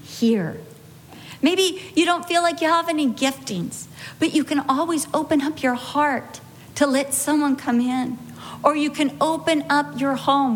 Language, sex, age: English, female, 50-69